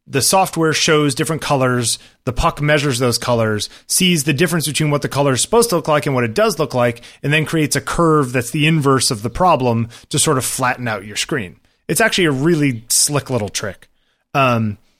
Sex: male